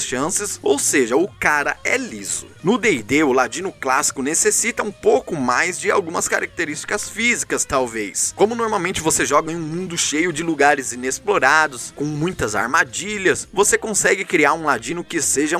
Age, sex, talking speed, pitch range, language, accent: 20-39, male, 160 wpm, 145-210 Hz, Portuguese, Brazilian